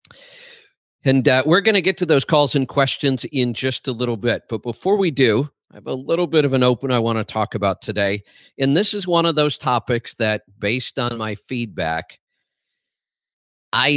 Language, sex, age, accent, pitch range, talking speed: English, male, 50-69, American, 105-135 Hz, 200 wpm